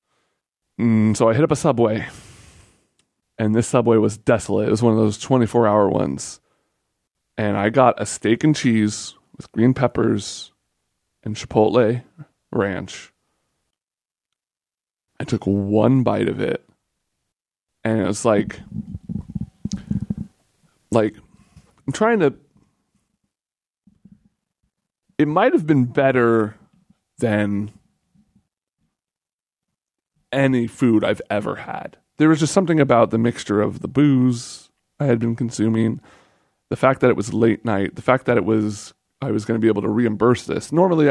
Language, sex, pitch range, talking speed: English, male, 110-135 Hz, 135 wpm